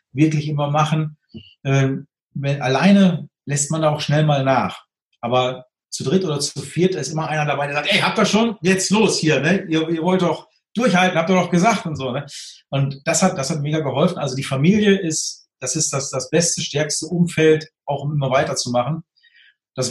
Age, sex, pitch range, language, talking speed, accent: 40-59, male, 145-180 Hz, German, 205 wpm, German